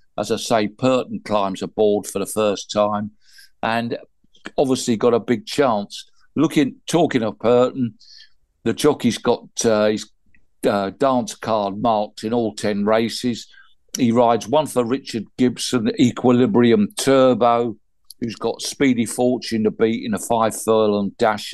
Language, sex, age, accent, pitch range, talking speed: English, male, 50-69, British, 110-130 Hz, 145 wpm